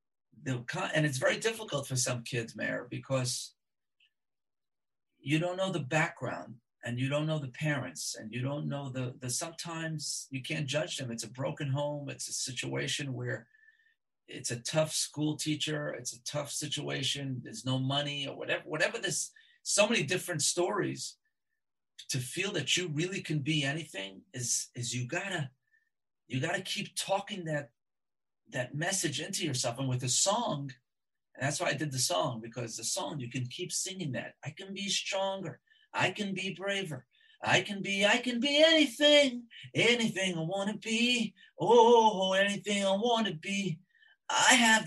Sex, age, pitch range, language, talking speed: male, 40-59, 135-205 Hz, English, 170 wpm